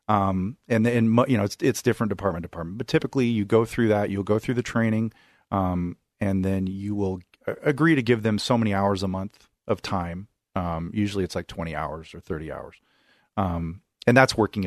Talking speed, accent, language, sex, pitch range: 205 wpm, American, English, male, 85-110 Hz